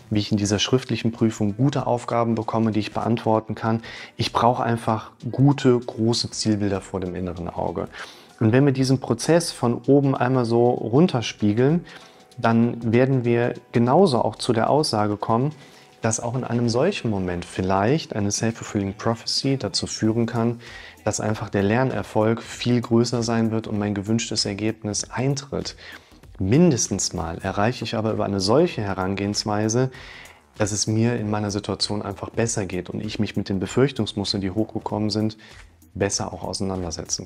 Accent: German